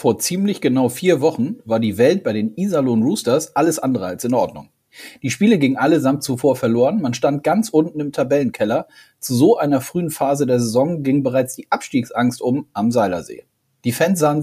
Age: 40-59